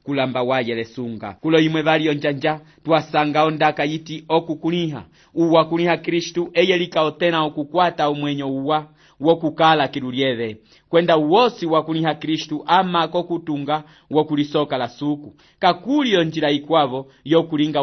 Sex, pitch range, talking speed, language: male, 145-170 Hz, 120 wpm, English